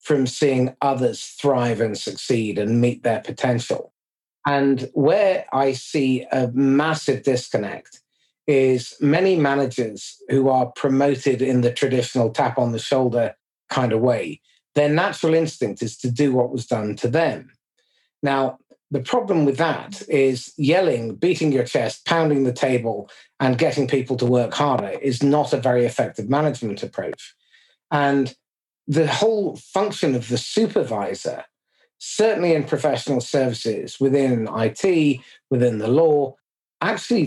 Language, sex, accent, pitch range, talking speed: English, male, British, 125-150 Hz, 140 wpm